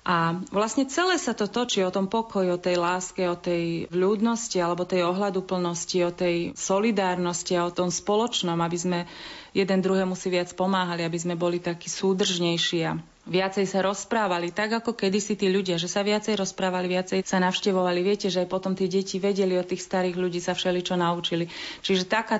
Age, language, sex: 30-49, Slovak, female